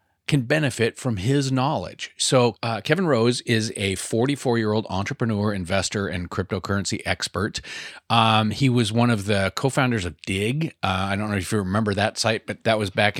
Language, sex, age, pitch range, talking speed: English, male, 30-49, 100-125 Hz, 175 wpm